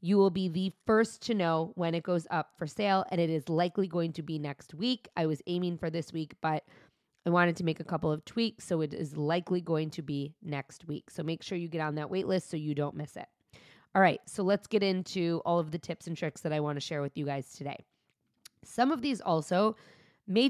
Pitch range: 155-190 Hz